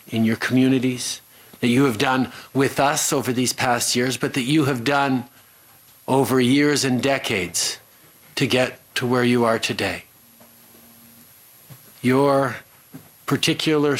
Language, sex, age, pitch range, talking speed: English, male, 50-69, 115-140 Hz, 135 wpm